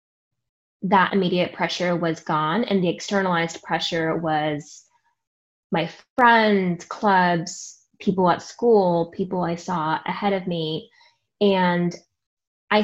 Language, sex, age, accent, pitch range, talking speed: English, female, 10-29, American, 165-200 Hz, 110 wpm